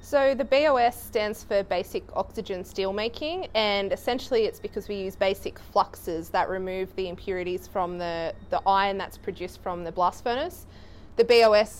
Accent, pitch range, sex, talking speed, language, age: Australian, 185-230 Hz, female, 165 wpm, English, 20-39